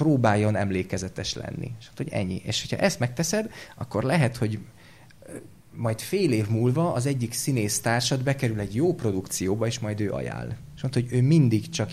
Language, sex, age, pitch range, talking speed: English, male, 30-49, 105-145 Hz, 175 wpm